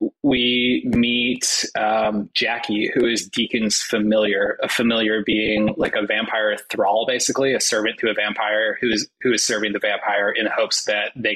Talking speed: 165 wpm